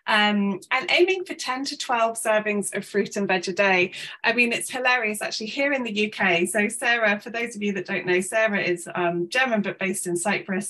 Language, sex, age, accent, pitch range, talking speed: English, female, 20-39, British, 180-220 Hz, 225 wpm